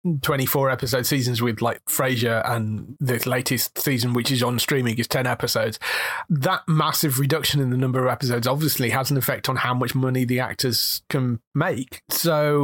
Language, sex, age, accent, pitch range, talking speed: English, male, 30-49, British, 125-160 Hz, 180 wpm